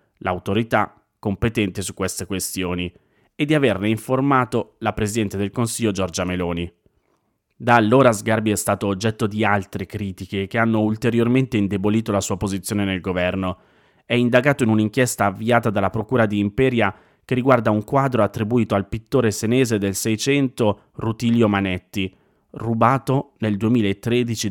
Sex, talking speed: male, 140 wpm